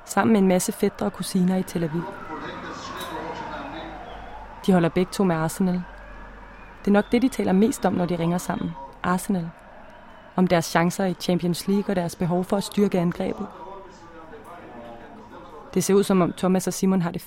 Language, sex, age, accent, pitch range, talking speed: Danish, female, 20-39, native, 175-205 Hz, 180 wpm